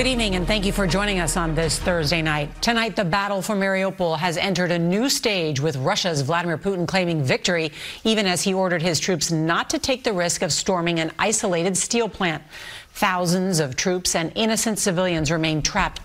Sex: female